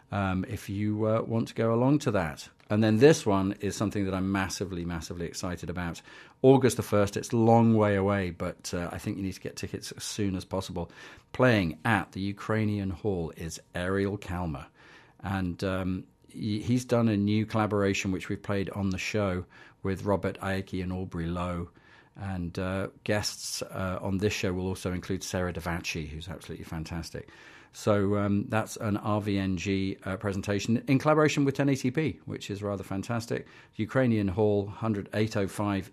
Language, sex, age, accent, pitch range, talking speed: English, male, 40-59, British, 95-110 Hz, 180 wpm